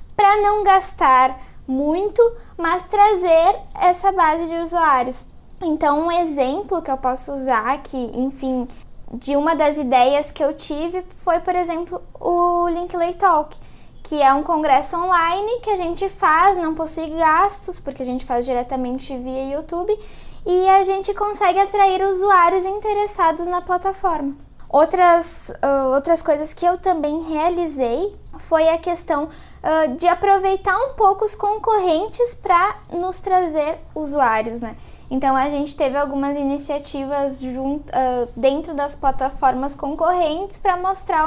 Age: 10-29